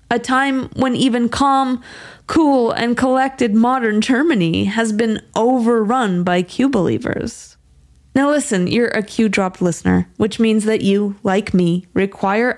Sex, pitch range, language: female, 175-230 Hz, English